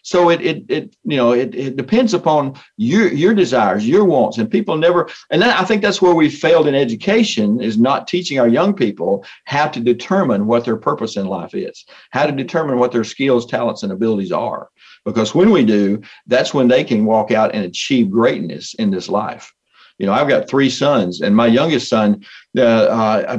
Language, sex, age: English, male, 50-69